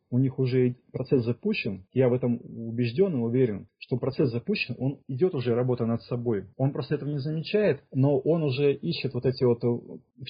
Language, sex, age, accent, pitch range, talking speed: Russian, male, 30-49, native, 125-150 Hz, 190 wpm